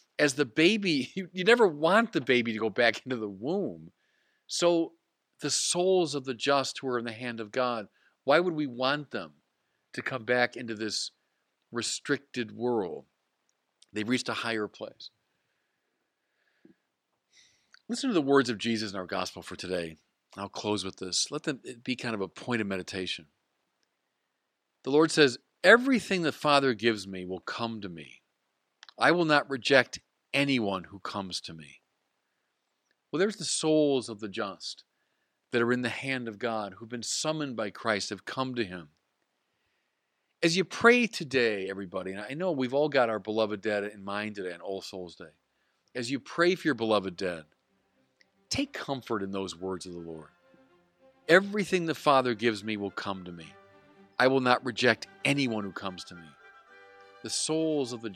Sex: male